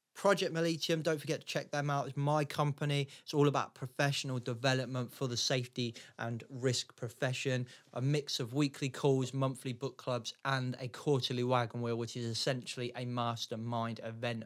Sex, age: male, 30-49